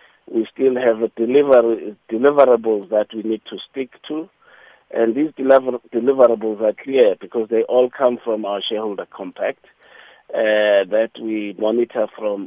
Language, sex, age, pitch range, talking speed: English, male, 50-69, 105-130 Hz, 135 wpm